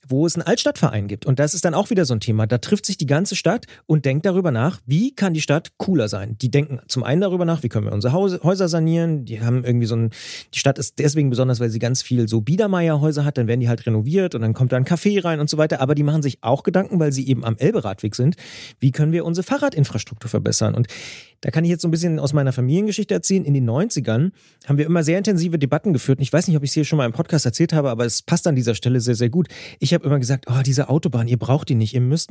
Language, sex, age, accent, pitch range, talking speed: German, male, 30-49, German, 125-175 Hz, 275 wpm